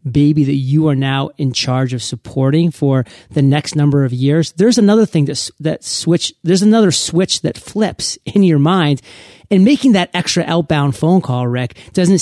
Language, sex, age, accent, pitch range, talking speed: English, male, 30-49, American, 130-160 Hz, 185 wpm